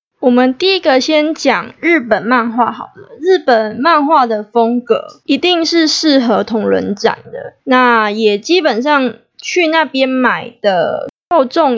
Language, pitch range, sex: Chinese, 220-275 Hz, female